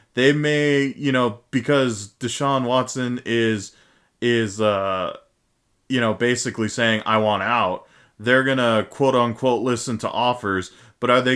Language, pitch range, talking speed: English, 105-130 Hz, 150 wpm